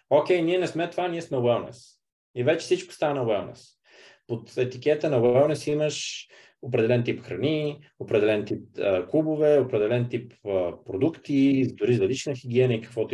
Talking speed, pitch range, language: 165 wpm, 115-150 Hz, Bulgarian